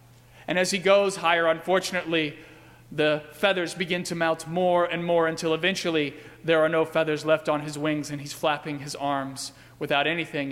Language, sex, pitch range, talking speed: English, male, 145-195 Hz, 175 wpm